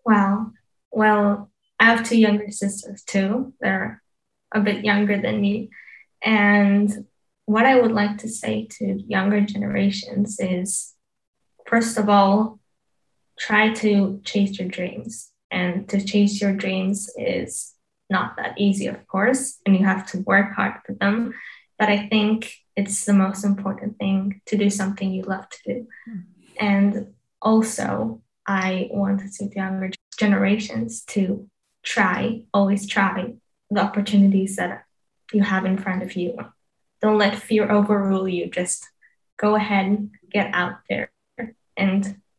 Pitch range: 195-220 Hz